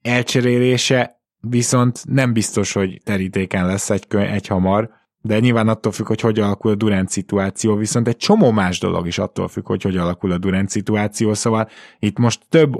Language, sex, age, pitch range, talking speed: Hungarian, male, 20-39, 95-115 Hz, 180 wpm